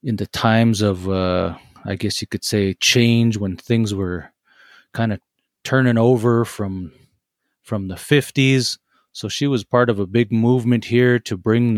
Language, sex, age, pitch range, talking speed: English, male, 30-49, 100-125 Hz, 170 wpm